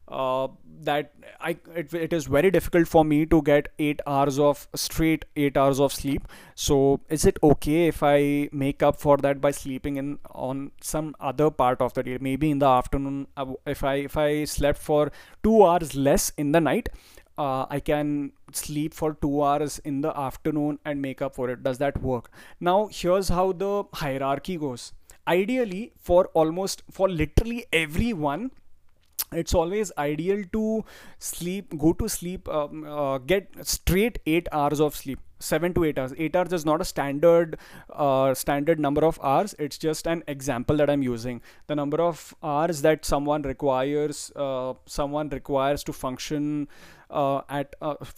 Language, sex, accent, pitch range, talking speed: English, male, Indian, 140-165 Hz, 175 wpm